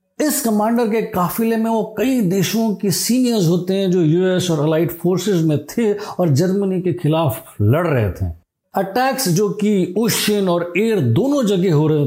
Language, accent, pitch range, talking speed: Hindi, native, 165-210 Hz, 180 wpm